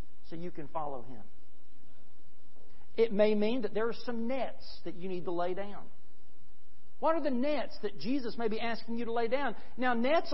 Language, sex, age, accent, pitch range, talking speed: English, male, 40-59, American, 180-265 Hz, 195 wpm